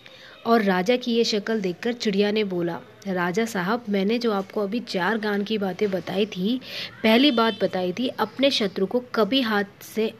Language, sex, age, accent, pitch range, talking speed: Hindi, female, 20-39, native, 195-240 Hz, 180 wpm